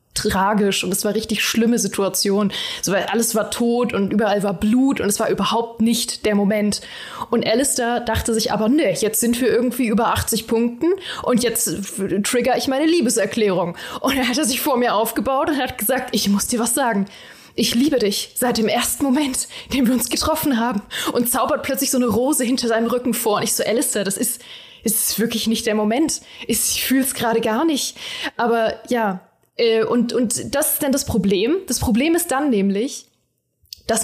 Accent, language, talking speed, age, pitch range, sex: German, German, 195 wpm, 20-39, 210-255 Hz, female